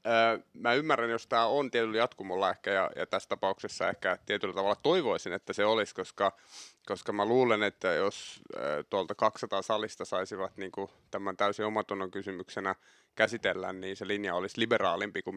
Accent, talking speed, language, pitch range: native, 165 wpm, Finnish, 105-125 Hz